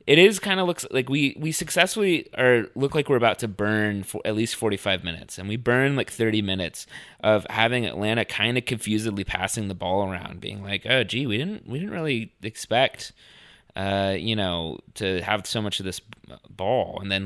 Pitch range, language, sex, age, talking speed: 95-120 Hz, English, male, 20-39, 205 wpm